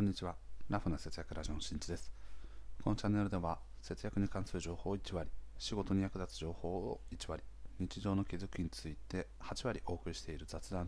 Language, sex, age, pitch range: Japanese, male, 40-59, 85-105 Hz